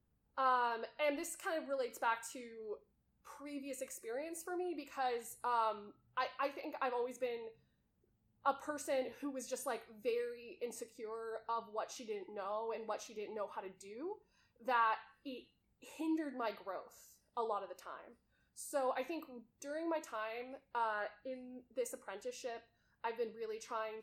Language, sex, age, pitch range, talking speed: English, female, 20-39, 215-270 Hz, 160 wpm